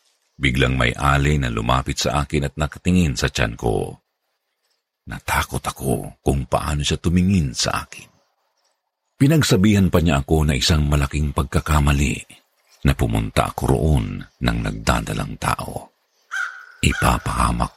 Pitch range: 70-95 Hz